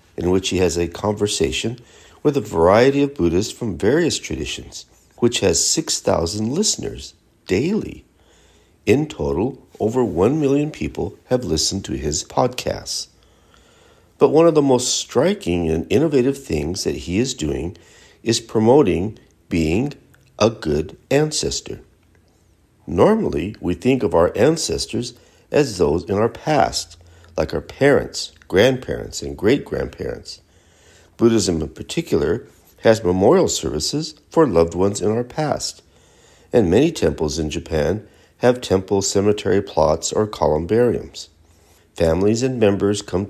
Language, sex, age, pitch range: English, male, 60-79, 85-120 Hz